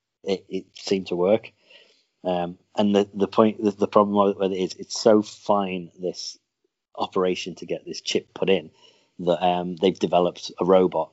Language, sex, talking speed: English, male, 180 wpm